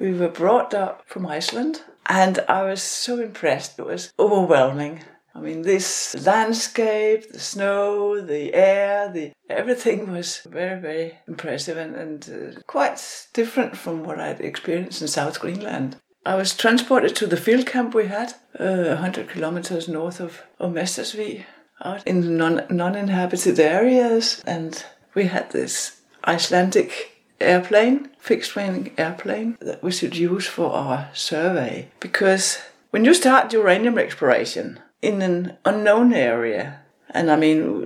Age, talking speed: 60-79, 140 wpm